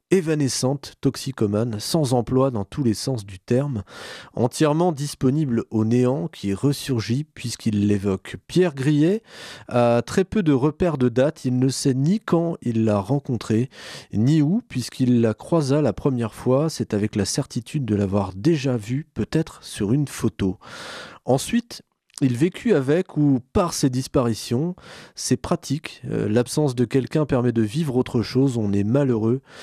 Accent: French